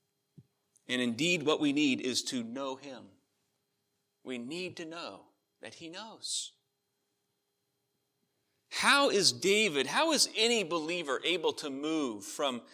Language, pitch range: English, 120-155 Hz